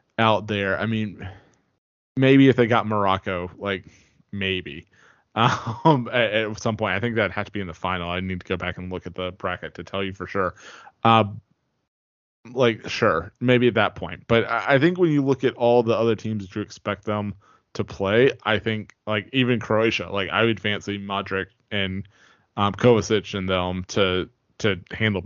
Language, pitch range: English, 95-115 Hz